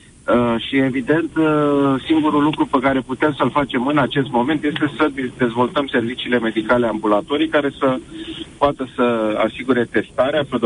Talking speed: 145 wpm